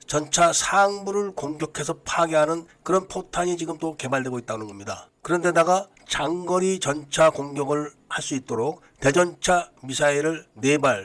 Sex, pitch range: male, 140-180 Hz